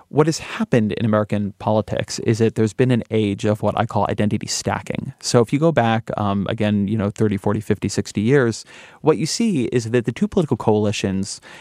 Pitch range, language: 105-120 Hz, English